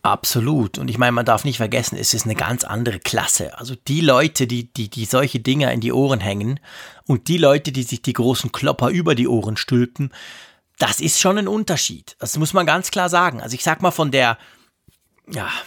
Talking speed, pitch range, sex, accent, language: 215 wpm, 120-165 Hz, male, German, German